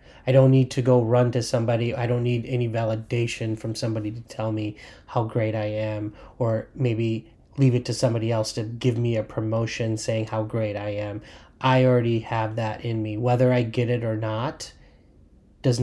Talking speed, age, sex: 195 wpm, 30-49, male